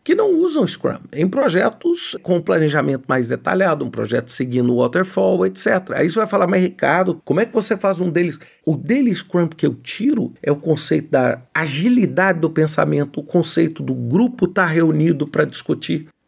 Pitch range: 140-195 Hz